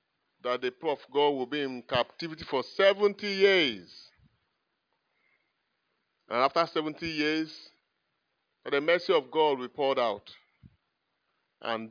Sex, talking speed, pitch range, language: male, 120 wpm, 130-185 Hz, English